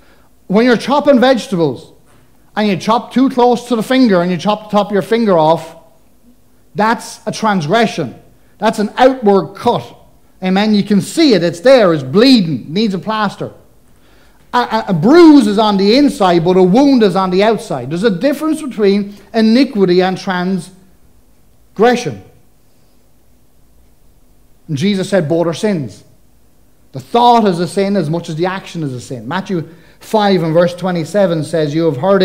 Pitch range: 165-215 Hz